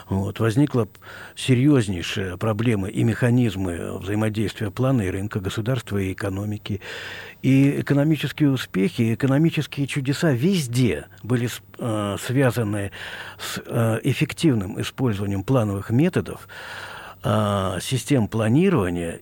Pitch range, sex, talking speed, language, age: 100-130 Hz, male, 95 wpm, Russian, 50-69